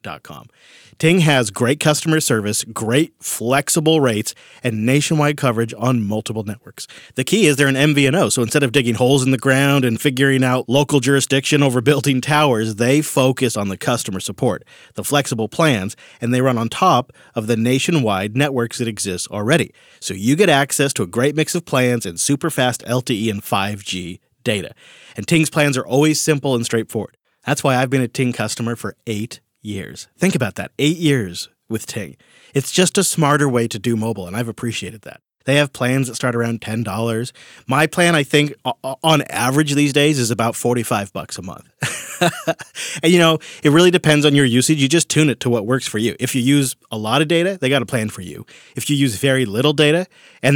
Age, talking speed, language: 40-59, 205 wpm, English